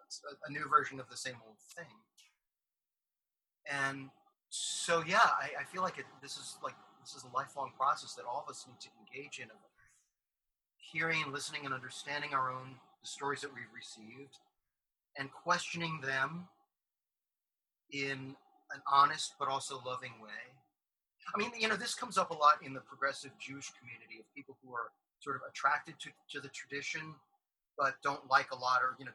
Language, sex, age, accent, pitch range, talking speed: English, male, 30-49, American, 130-165 Hz, 175 wpm